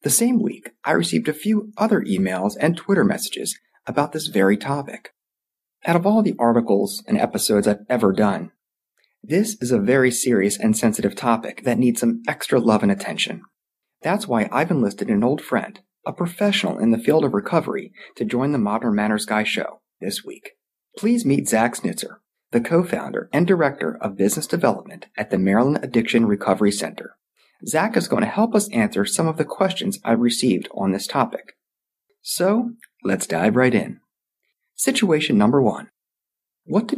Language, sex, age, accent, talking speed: English, male, 30-49, American, 175 wpm